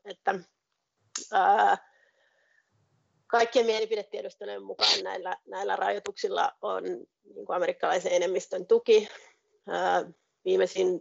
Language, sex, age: Finnish, female, 30-49